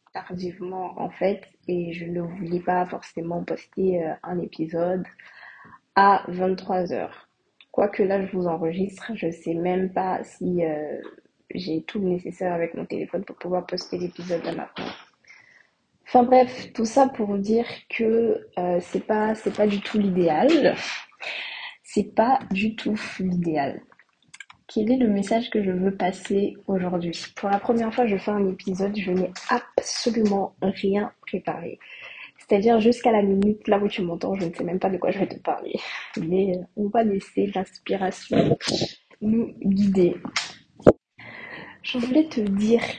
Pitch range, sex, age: 180-220 Hz, female, 20-39